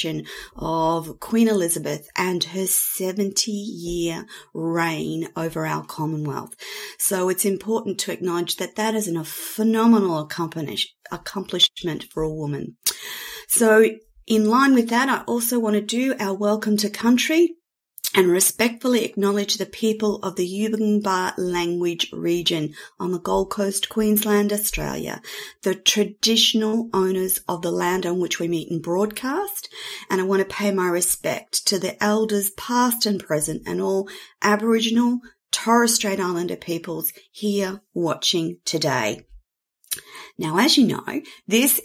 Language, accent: English, Australian